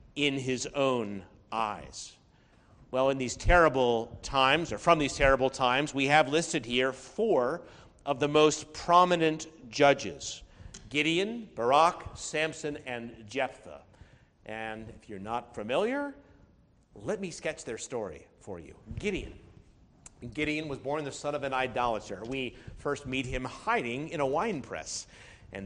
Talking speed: 140 wpm